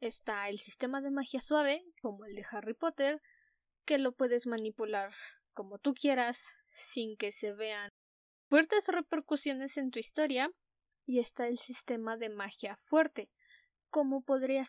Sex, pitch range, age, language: female, 225-285 Hz, 10-29, Spanish